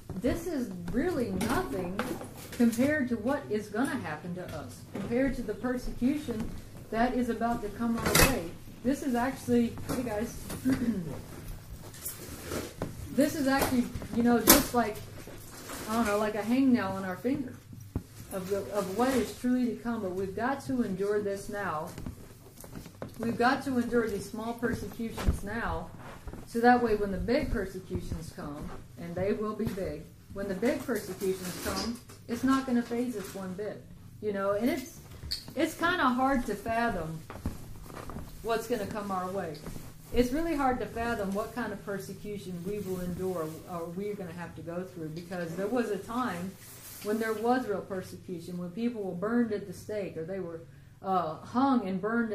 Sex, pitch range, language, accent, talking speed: female, 190-245 Hz, English, American, 175 wpm